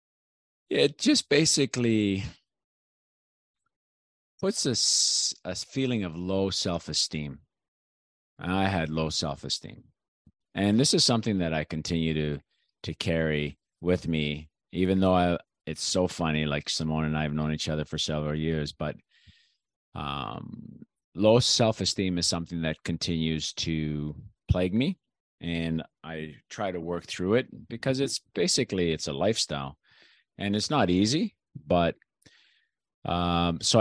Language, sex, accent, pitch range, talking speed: English, male, American, 75-100 Hz, 130 wpm